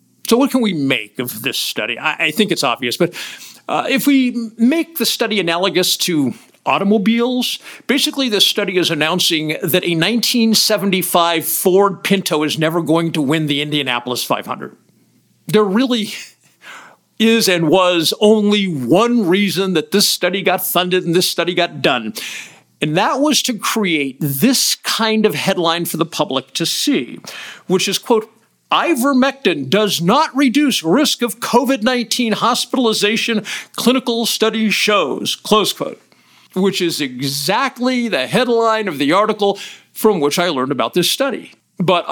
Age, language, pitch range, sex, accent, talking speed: 50-69, English, 170-230 Hz, male, American, 150 wpm